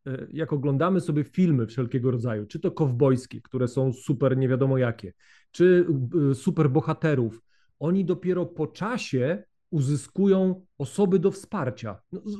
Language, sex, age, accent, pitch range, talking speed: Polish, male, 40-59, native, 135-175 Hz, 130 wpm